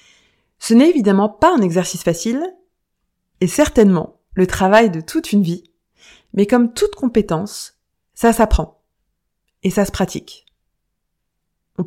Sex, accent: female, French